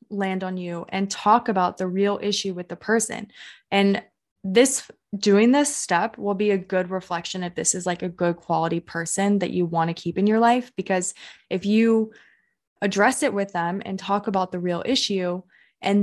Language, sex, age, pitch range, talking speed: English, female, 20-39, 180-215 Hz, 195 wpm